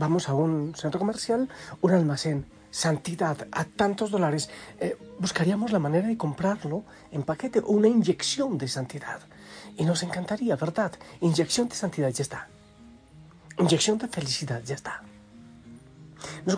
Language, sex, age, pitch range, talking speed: Spanish, male, 40-59, 140-185 Hz, 140 wpm